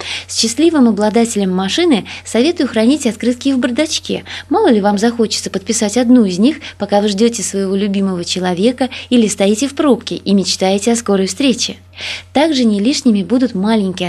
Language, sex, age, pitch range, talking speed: Russian, female, 20-39, 185-255 Hz, 160 wpm